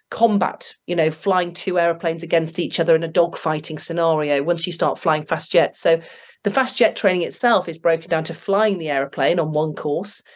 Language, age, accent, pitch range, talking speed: English, 40-59, British, 165-205 Hz, 205 wpm